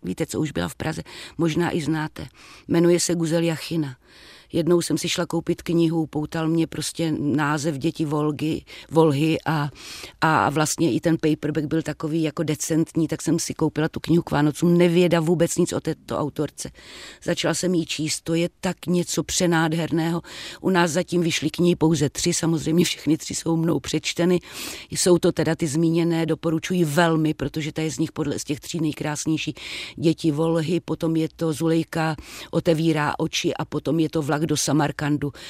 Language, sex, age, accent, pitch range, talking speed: Czech, female, 30-49, native, 155-170 Hz, 175 wpm